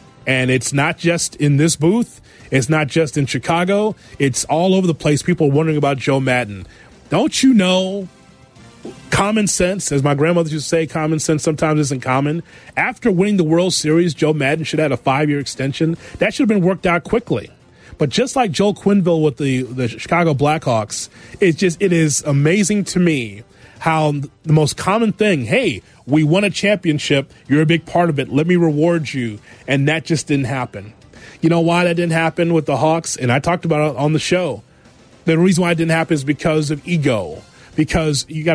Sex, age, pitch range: male, 30-49, 140-180 Hz